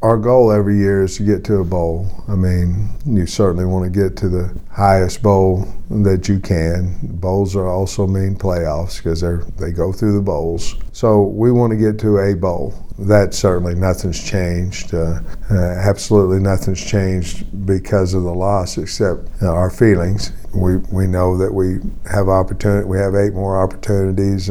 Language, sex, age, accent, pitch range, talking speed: English, male, 50-69, American, 90-100 Hz, 180 wpm